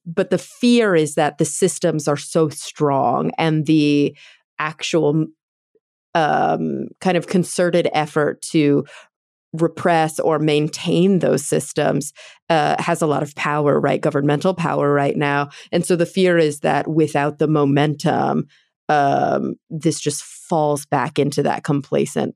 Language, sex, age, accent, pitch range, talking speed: English, female, 30-49, American, 145-170 Hz, 140 wpm